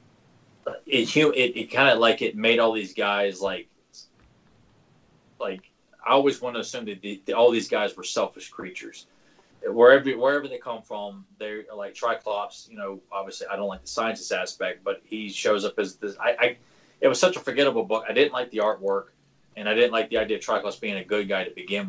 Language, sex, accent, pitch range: English, male, American, 100-115 Hz